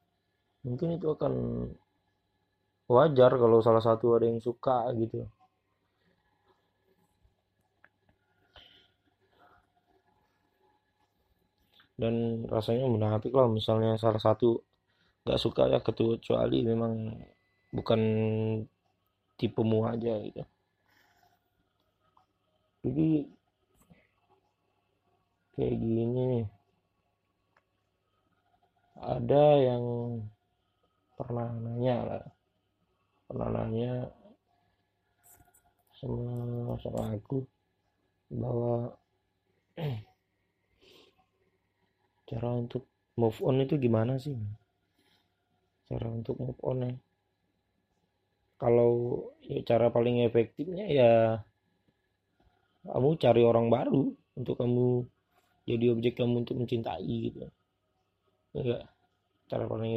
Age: 30-49